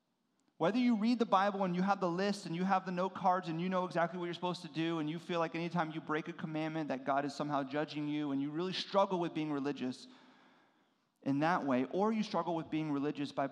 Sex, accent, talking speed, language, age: male, American, 255 wpm, English, 30-49